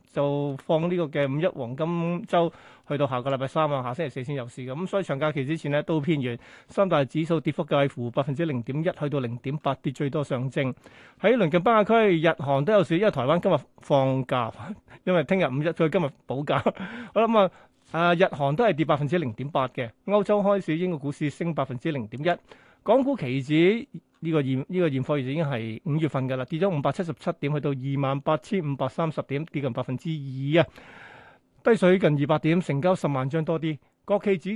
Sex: male